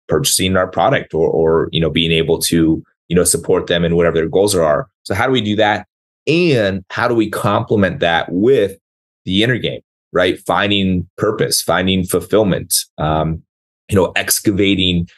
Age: 30-49